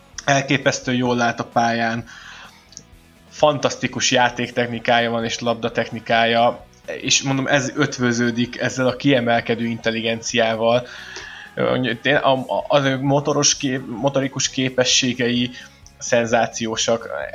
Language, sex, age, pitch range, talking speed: Hungarian, male, 20-39, 115-130 Hz, 85 wpm